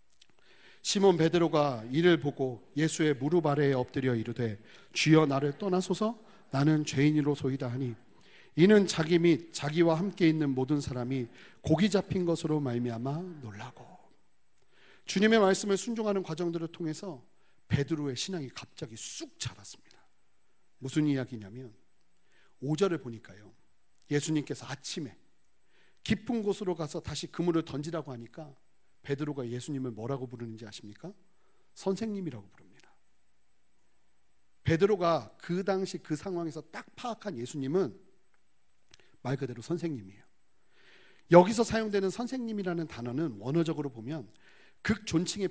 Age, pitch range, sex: 40-59, 125-180 Hz, male